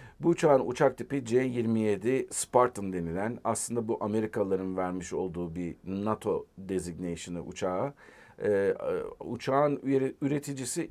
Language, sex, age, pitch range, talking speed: Turkish, male, 50-69, 105-140 Hz, 105 wpm